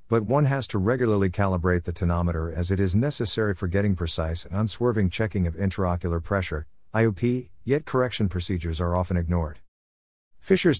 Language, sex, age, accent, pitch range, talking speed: English, male, 50-69, American, 85-115 Hz, 160 wpm